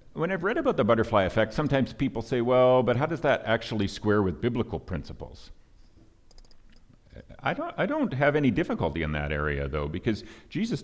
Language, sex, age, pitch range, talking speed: English, male, 50-69, 80-110 Hz, 185 wpm